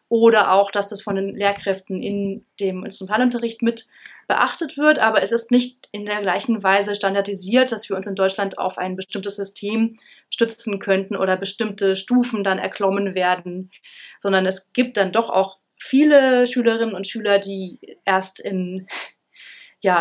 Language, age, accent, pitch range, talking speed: German, 30-49, German, 195-225 Hz, 160 wpm